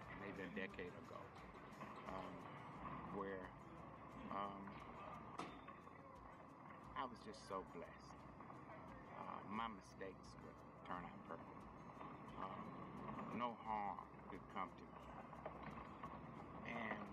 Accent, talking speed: American, 95 wpm